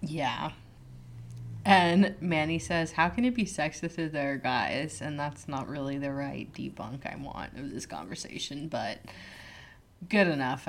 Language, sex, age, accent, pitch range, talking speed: English, female, 20-39, American, 135-165 Hz, 150 wpm